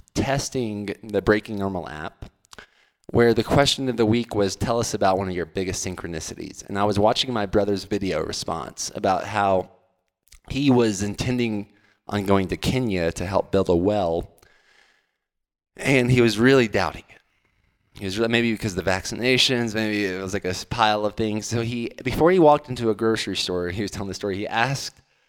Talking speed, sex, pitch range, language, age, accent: 190 wpm, male, 90-110 Hz, English, 20-39, American